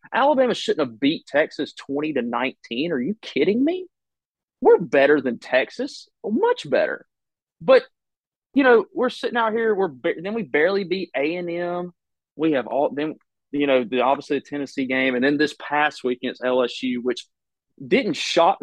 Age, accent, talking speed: 30-49, American, 170 wpm